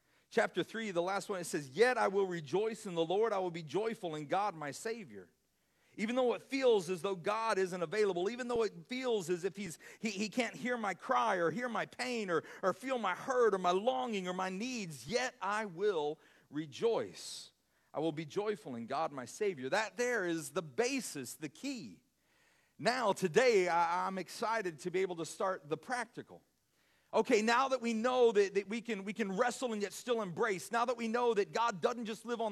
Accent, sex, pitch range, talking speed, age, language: American, male, 185-245 Hz, 215 wpm, 40-59, English